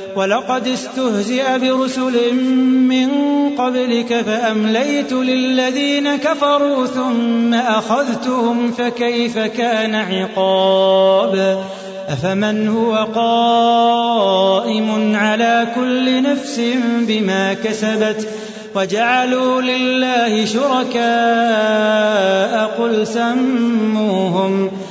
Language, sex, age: Arabic, male, 30-49